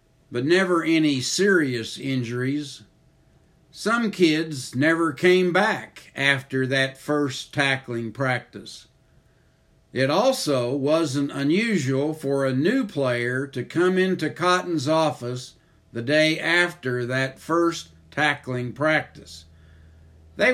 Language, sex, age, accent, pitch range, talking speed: English, male, 60-79, American, 125-170 Hz, 105 wpm